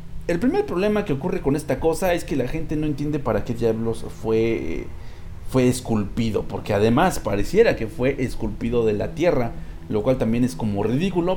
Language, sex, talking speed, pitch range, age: English, male, 185 wpm, 110-160 Hz, 40-59